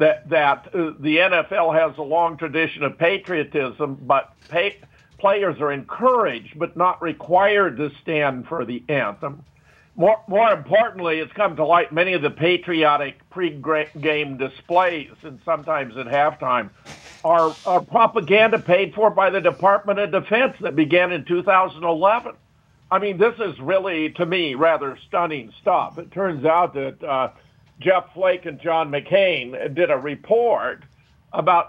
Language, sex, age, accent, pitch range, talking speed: English, male, 50-69, American, 150-180 Hz, 145 wpm